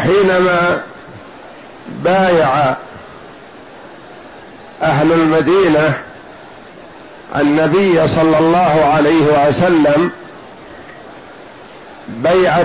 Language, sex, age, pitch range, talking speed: Arabic, male, 50-69, 155-180 Hz, 45 wpm